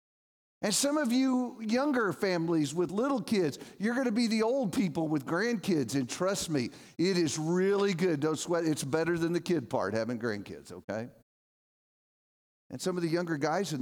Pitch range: 155-250 Hz